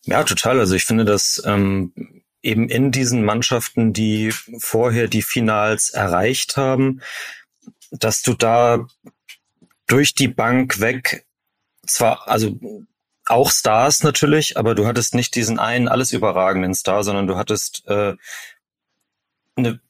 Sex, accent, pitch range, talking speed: male, German, 105-125 Hz, 125 wpm